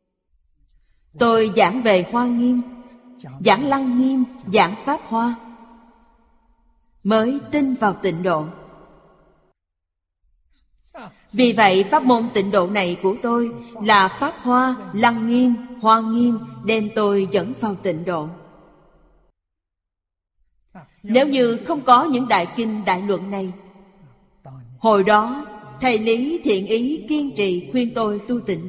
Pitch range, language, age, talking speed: 190-240 Hz, Vietnamese, 30-49, 125 wpm